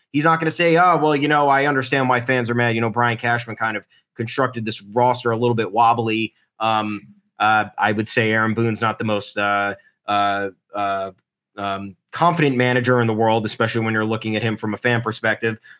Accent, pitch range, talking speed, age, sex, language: American, 110-130 Hz, 215 wpm, 20-39, male, English